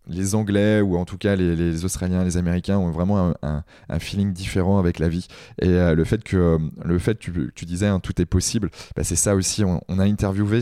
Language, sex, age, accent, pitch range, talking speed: French, male, 20-39, French, 85-100 Hz, 245 wpm